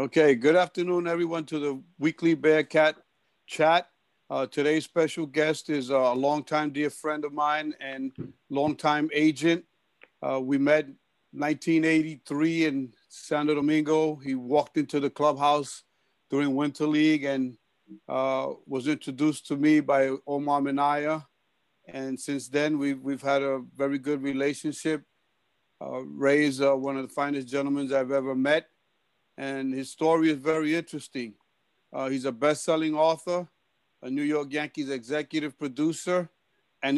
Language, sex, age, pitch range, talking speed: English, male, 50-69, 140-155 Hz, 140 wpm